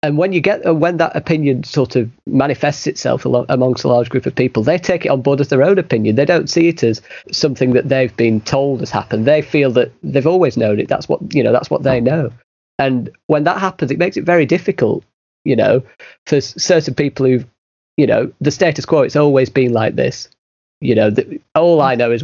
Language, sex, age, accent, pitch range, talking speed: English, male, 30-49, British, 125-155 Hz, 230 wpm